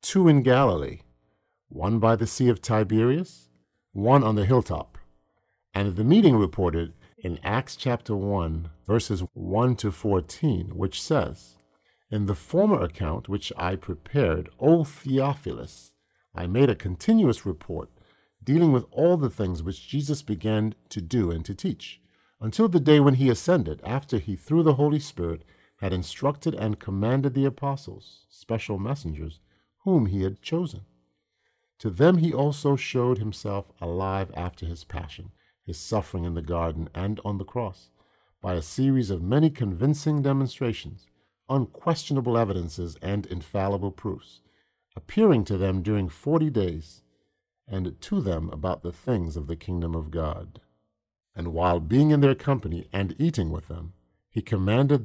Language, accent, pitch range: English, American, 85-130 Hz